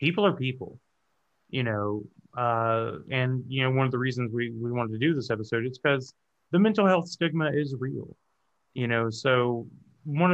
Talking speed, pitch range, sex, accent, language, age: 185 wpm, 105-135 Hz, male, American, English, 20-39